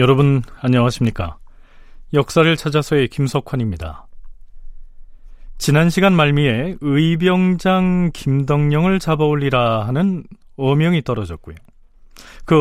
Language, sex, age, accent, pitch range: Korean, male, 40-59, native, 120-155 Hz